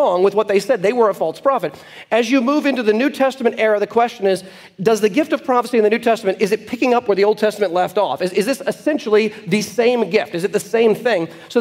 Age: 40-59